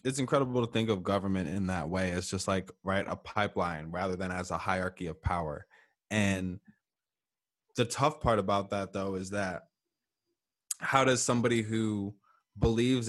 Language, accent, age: English, American, 20-39